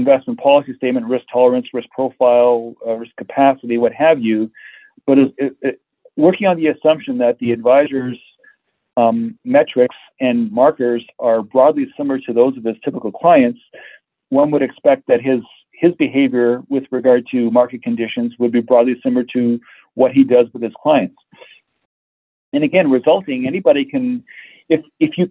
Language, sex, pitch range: English, male, 120-165 Hz